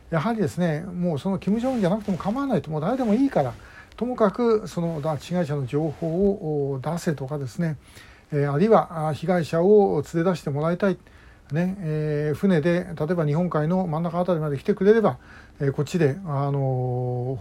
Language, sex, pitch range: Japanese, male, 145-190 Hz